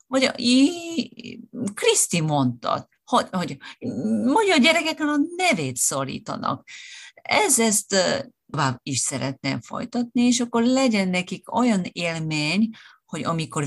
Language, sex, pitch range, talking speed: Hungarian, female, 150-255 Hz, 115 wpm